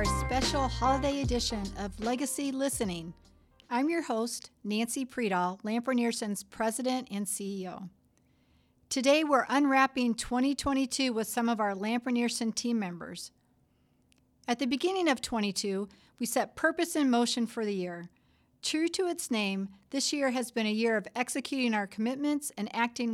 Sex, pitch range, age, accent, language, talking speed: female, 215-270 Hz, 50-69, American, English, 145 wpm